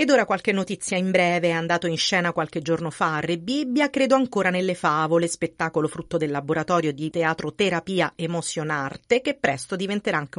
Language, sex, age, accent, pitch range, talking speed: Italian, female, 40-59, native, 165-210 Hz, 180 wpm